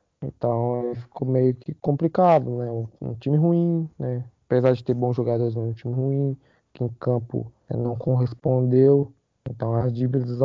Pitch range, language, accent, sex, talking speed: 120-145 Hz, Portuguese, Brazilian, male, 155 wpm